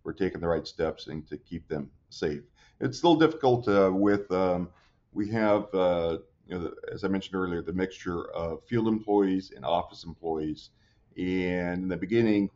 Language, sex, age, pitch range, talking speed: English, male, 40-59, 85-100 Hz, 170 wpm